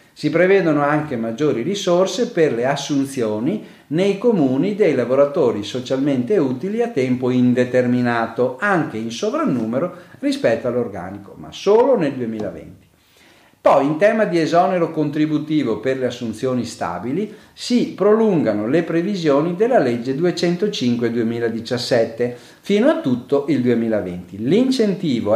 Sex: male